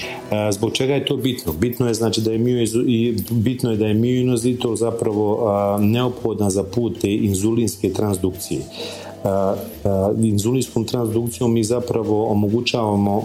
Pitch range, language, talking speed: 95-115 Hz, Croatian, 125 wpm